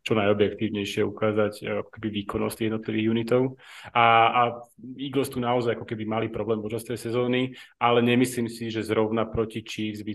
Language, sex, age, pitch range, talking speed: Slovak, male, 30-49, 100-110 Hz, 160 wpm